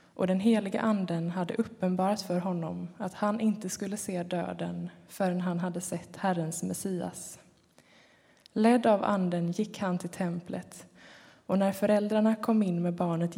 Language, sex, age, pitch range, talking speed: Swedish, female, 20-39, 175-205 Hz, 150 wpm